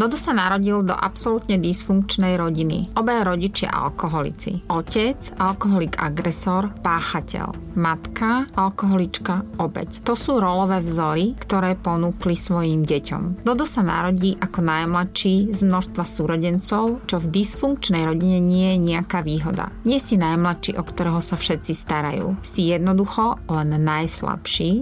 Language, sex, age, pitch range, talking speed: Slovak, female, 30-49, 165-200 Hz, 130 wpm